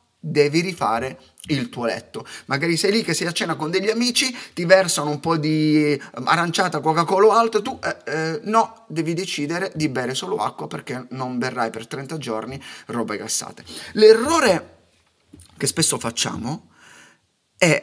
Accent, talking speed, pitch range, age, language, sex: native, 160 wpm, 135-205 Hz, 30-49, Italian, male